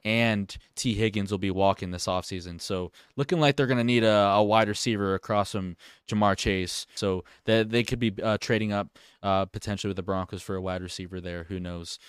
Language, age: English, 20-39